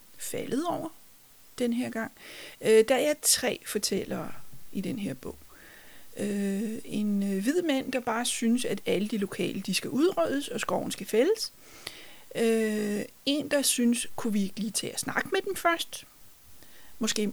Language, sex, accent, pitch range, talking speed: Danish, female, native, 210-260 Hz, 165 wpm